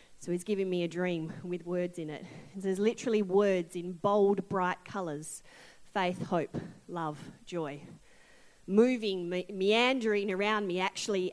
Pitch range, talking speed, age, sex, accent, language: 180-275 Hz, 140 wpm, 30-49, female, Australian, English